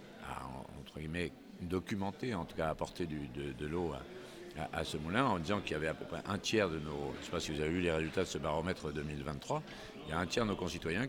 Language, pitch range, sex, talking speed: French, 80-105 Hz, male, 265 wpm